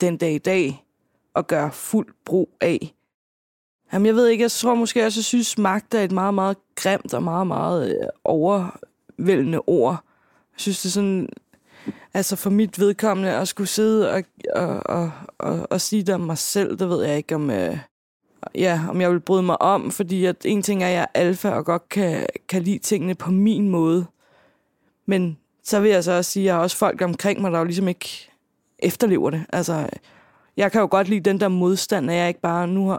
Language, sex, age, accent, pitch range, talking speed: Danish, female, 20-39, native, 175-205 Hz, 215 wpm